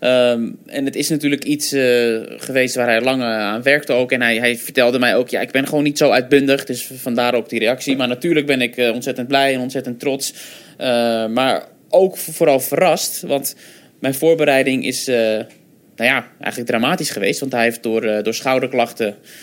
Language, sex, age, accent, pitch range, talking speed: Dutch, male, 20-39, Dutch, 120-140 Hz, 200 wpm